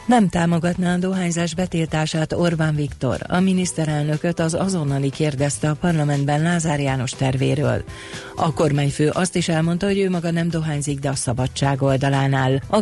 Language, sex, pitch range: Hungarian, female, 140-170 Hz